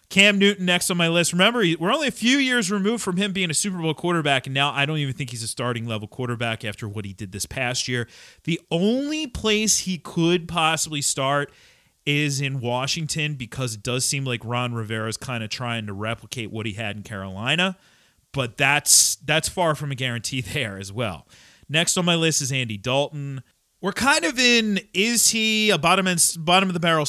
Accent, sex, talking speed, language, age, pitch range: American, male, 210 wpm, English, 30-49, 125-175 Hz